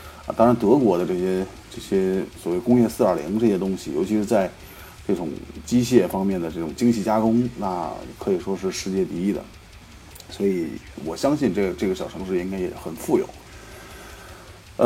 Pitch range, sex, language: 95-120 Hz, male, Chinese